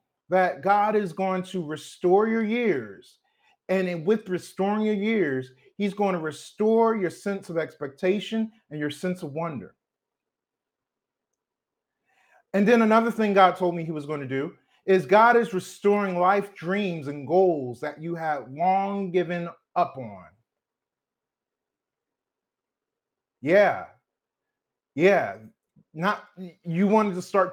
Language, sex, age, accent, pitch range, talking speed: English, male, 40-59, American, 175-210 Hz, 130 wpm